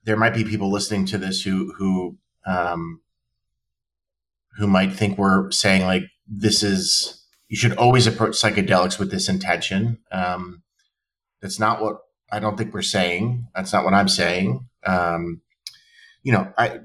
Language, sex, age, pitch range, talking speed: English, male, 30-49, 95-110 Hz, 155 wpm